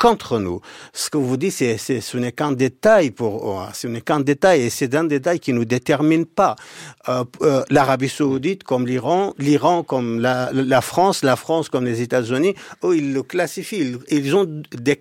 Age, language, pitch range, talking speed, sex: 50-69, French, 125-170 Hz, 200 wpm, male